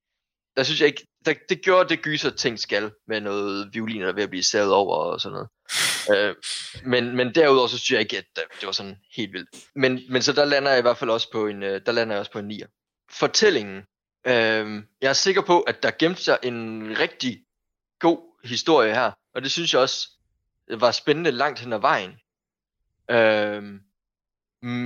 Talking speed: 180 wpm